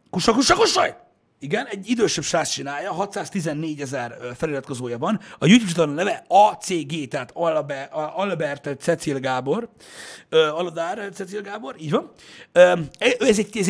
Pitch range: 140-190 Hz